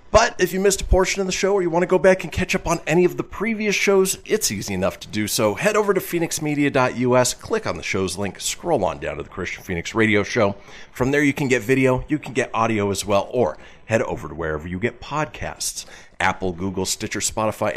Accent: American